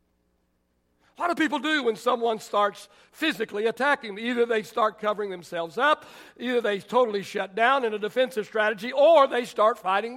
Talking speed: 170 wpm